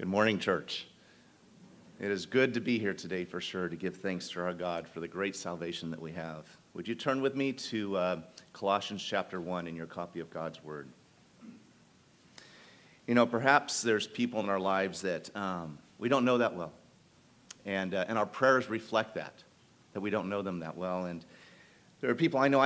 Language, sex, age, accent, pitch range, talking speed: English, male, 40-59, American, 90-125 Hz, 200 wpm